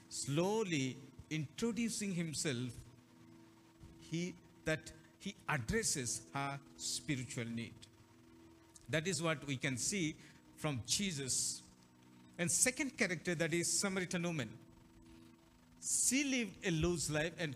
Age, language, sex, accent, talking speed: 60-79, Telugu, male, native, 105 wpm